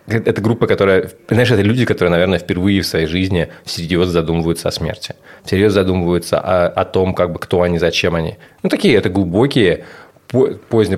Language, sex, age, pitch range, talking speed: Russian, male, 30-49, 85-100 Hz, 175 wpm